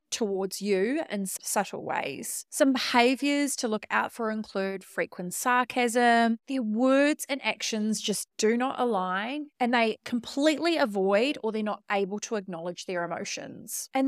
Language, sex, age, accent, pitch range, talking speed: English, female, 20-39, Australian, 210-280 Hz, 150 wpm